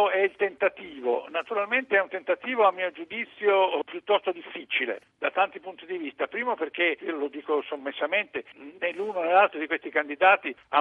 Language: Italian